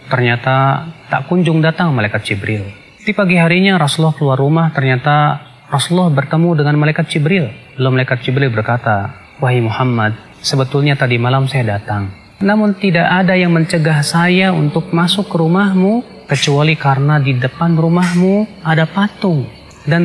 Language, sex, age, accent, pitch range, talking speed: Indonesian, male, 30-49, native, 130-170 Hz, 140 wpm